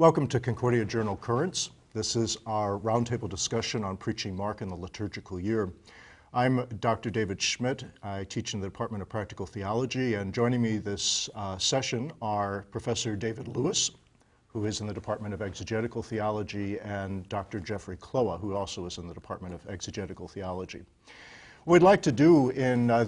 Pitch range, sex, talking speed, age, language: 105-125 Hz, male, 175 wpm, 50-69, English